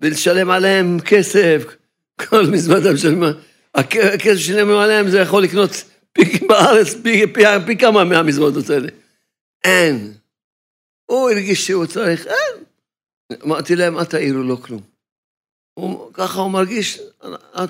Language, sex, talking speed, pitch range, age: Hebrew, male, 130 wpm, 150-195 Hz, 60-79